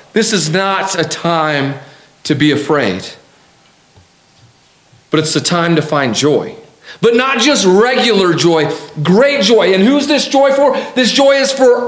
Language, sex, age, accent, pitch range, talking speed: English, male, 40-59, American, 180-245 Hz, 155 wpm